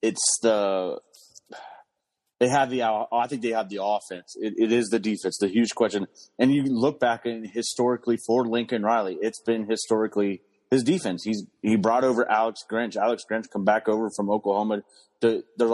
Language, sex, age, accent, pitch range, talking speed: English, male, 30-49, American, 105-120 Hz, 185 wpm